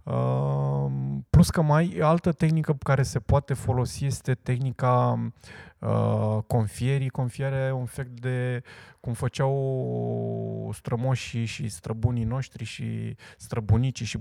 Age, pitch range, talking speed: 20-39, 110-135 Hz, 110 wpm